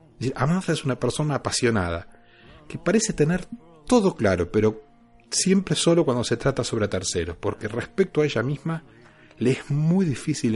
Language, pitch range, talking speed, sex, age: Spanish, 110-150 Hz, 155 wpm, male, 40-59